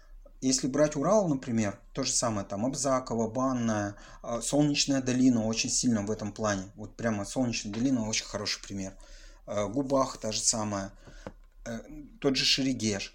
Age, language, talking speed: 30-49, Russian, 140 wpm